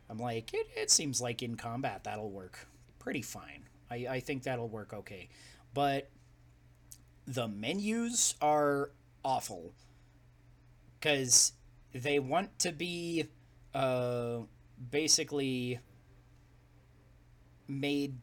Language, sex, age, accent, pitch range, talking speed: English, male, 30-49, American, 120-150 Hz, 100 wpm